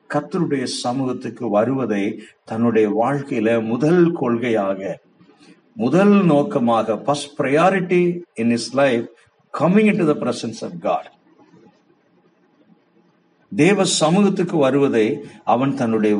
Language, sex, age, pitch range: Tamil, male, 50-69, 110-160 Hz